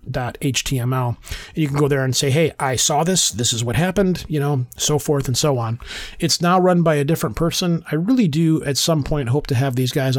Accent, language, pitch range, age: American, English, 125-155 Hz, 30-49